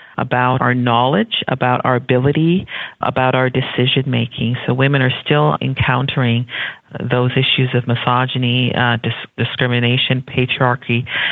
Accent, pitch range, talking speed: American, 125-140 Hz, 120 wpm